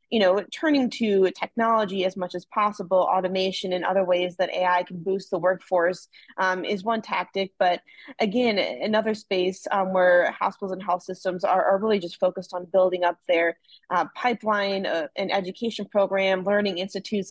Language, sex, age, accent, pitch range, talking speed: English, female, 20-39, American, 180-200 Hz, 175 wpm